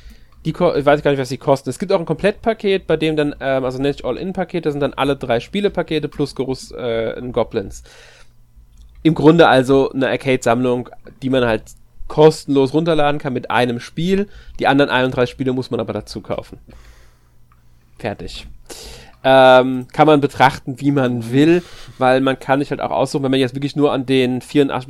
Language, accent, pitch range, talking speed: German, German, 120-155 Hz, 190 wpm